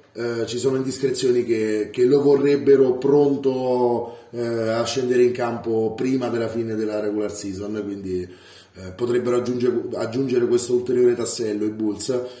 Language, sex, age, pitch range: Italian, male, 30-49, 110-135 Hz